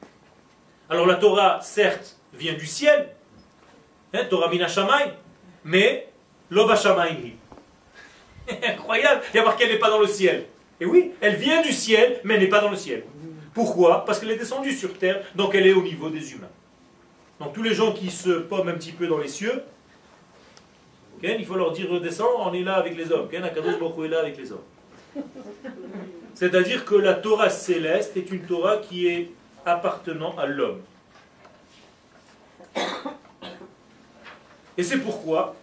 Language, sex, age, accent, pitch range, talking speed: French, male, 40-59, French, 165-220 Hz, 165 wpm